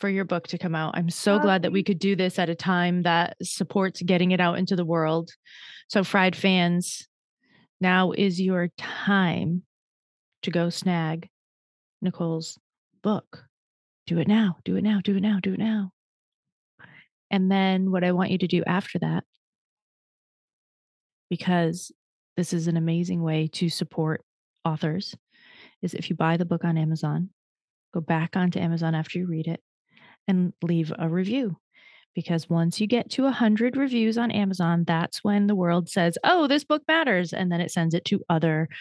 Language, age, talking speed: English, 30-49, 175 wpm